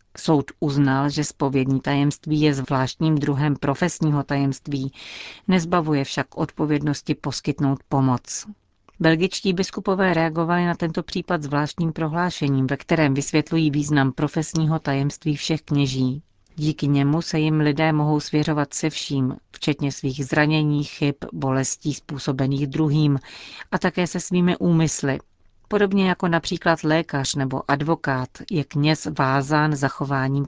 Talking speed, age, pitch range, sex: 120 wpm, 40-59, 140-160 Hz, female